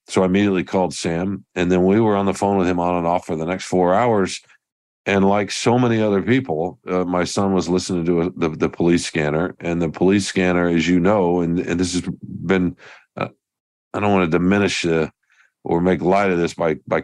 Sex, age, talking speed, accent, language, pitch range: male, 50-69, 230 wpm, American, English, 85-100 Hz